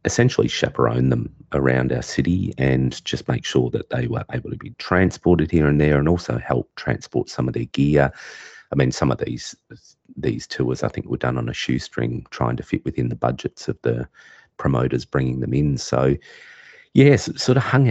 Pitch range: 65-90 Hz